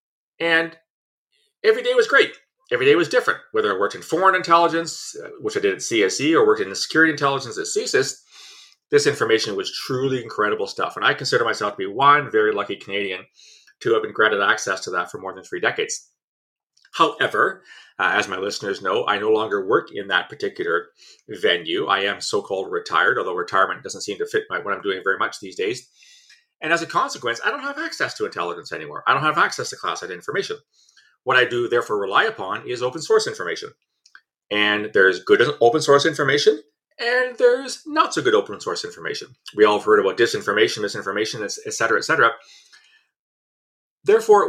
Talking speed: 190 wpm